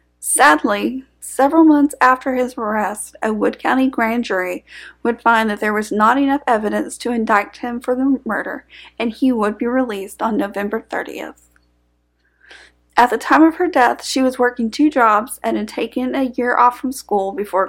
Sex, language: female, English